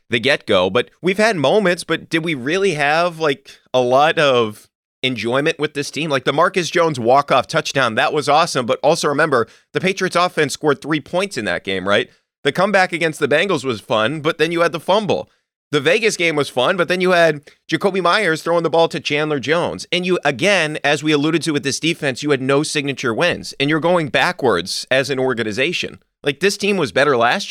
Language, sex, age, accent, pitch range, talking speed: English, male, 30-49, American, 130-170 Hz, 220 wpm